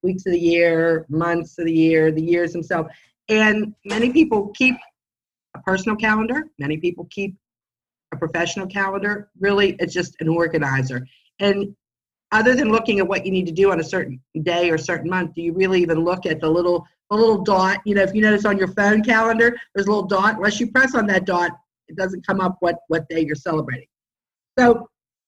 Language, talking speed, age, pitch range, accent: English, 205 wpm, 50-69, 170-215 Hz, American